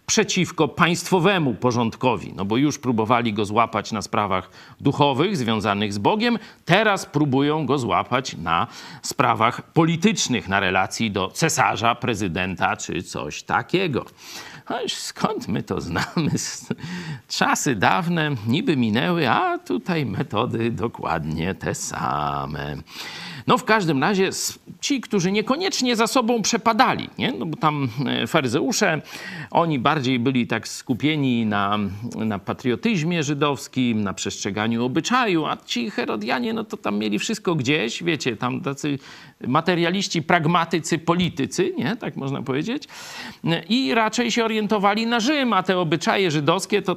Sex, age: male, 50-69